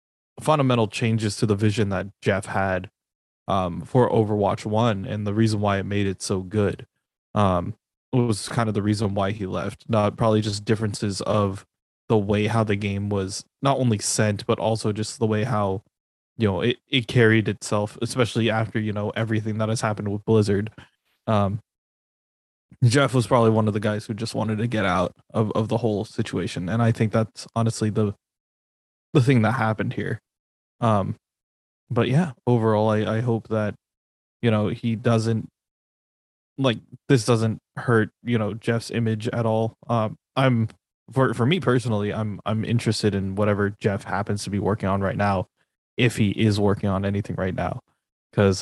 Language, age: English, 20-39